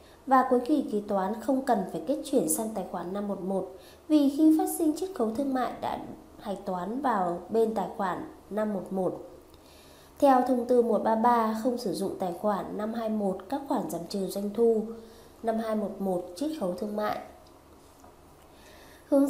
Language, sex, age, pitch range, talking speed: Vietnamese, female, 20-39, 195-260 Hz, 160 wpm